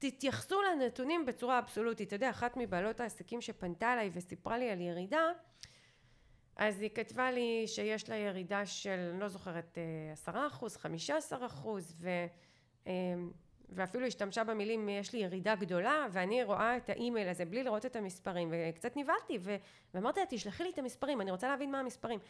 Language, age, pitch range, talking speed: Hebrew, 30-49, 190-270 Hz, 160 wpm